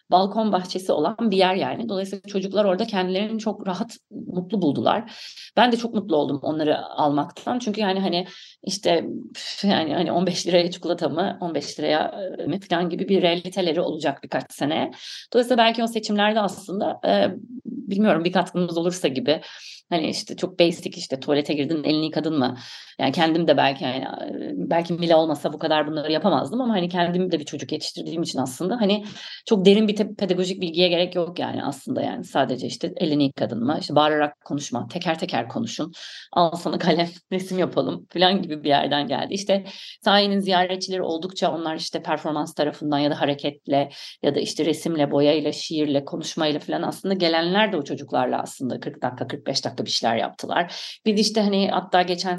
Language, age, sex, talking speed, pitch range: Turkish, 40-59, female, 170 wpm, 160-195 Hz